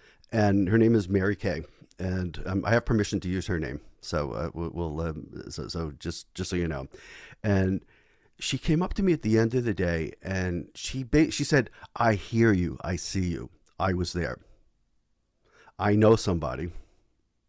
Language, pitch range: English, 85-100 Hz